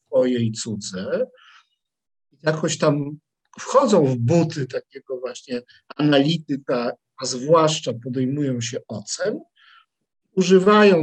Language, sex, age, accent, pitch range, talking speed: English, male, 50-69, Polish, 135-195 Hz, 95 wpm